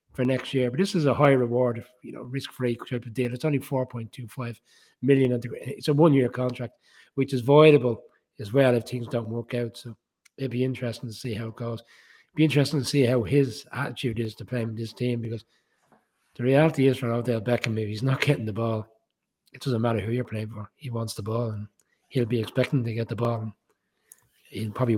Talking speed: 225 wpm